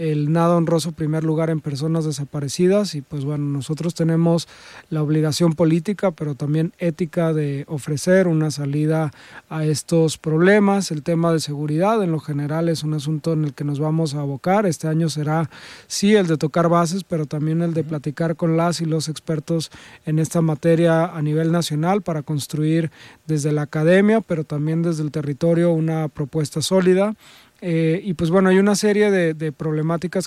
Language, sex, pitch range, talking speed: Spanish, male, 155-170 Hz, 180 wpm